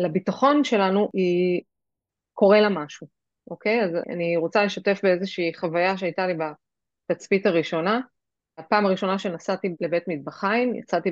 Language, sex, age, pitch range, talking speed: Hebrew, female, 20-39, 180-220 Hz, 125 wpm